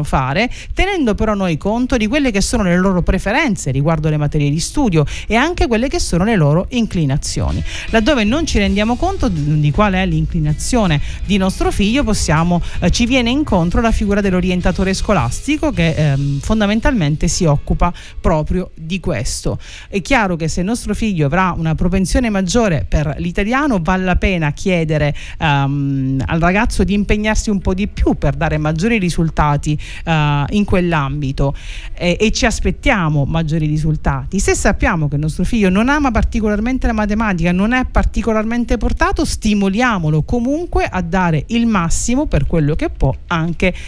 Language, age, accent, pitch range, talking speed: Italian, 40-59, native, 155-225 Hz, 155 wpm